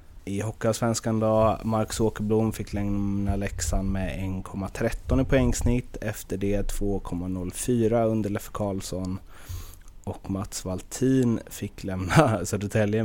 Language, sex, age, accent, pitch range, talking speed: Swedish, male, 30-49, native, 85-110 Hz, 115 wpm